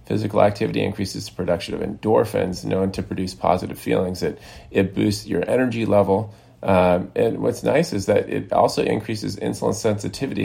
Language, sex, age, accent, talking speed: English, male, 30-49, American, 165 wpm